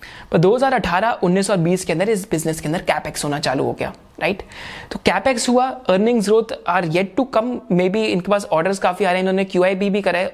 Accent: native